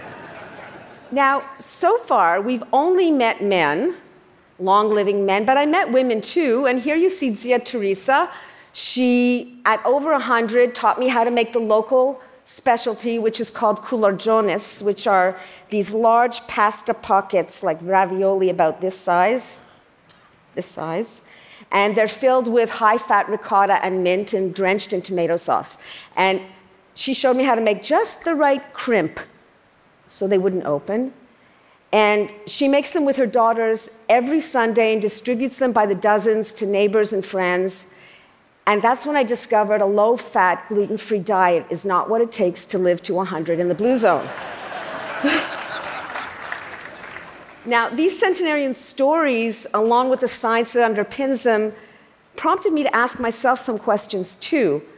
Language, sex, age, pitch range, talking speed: Arabic, female, 50-69, 200-255 Hz, 150 wpm